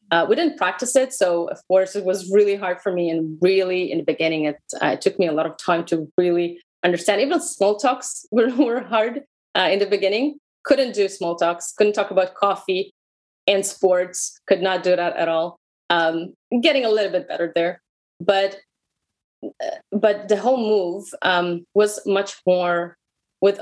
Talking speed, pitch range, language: 185 wpm, 170-215 Hz, English